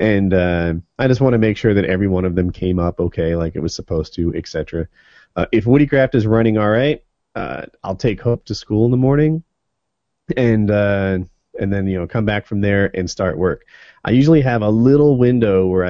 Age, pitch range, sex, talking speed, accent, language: 30-49, 90-115 Hz, male, 220 wpm, American, English